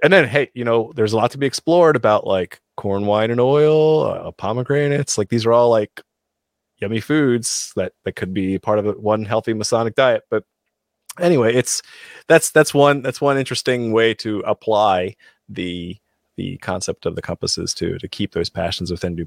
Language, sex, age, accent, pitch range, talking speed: English, male, 30-49, American, 90-120 Hz, 190 wpm